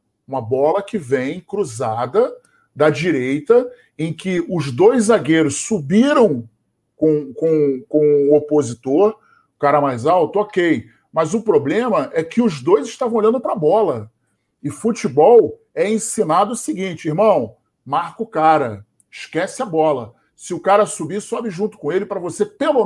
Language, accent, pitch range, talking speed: Portuguese, Brazilian, 155-230 Hz, 150 wpm